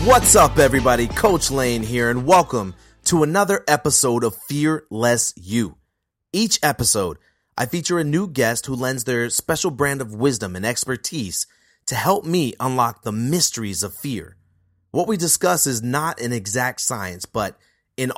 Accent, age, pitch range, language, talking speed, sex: American, 30-49, 110-155 Hz, English, 160 wpm, male